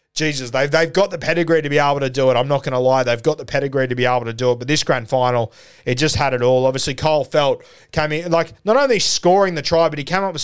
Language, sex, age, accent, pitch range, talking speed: English, male, 20-39, Australian, 125-150 Hz, 300 wpm